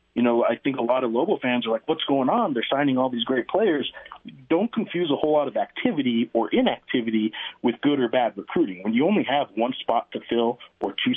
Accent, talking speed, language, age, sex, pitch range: American, 235 wpm, English, 40-59, male, 120-165 Hz